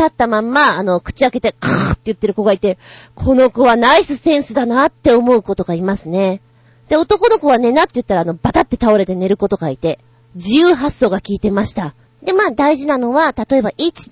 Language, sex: Japanese, female